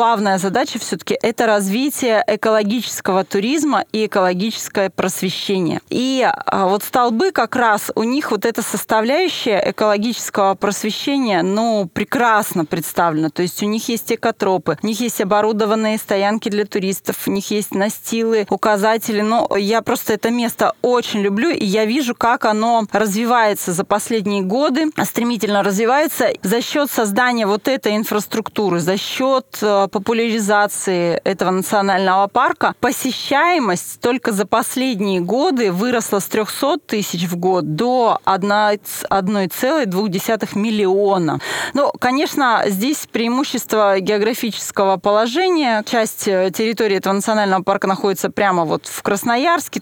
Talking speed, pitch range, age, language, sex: 125 wpm, 195-235 Hz, 20-39, Russian, female